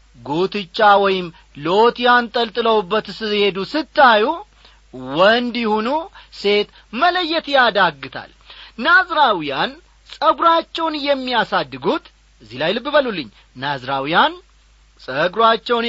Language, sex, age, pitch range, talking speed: Amharic, male, 40-59, 170-250 Hz, 80 wpm